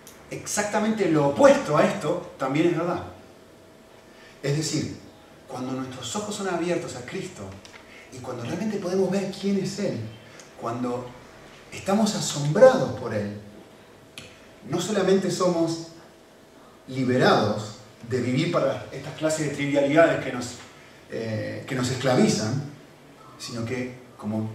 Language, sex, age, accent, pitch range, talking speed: Spanish, male, 30-49, Argentinian, 125-210 Hz, 120 wpm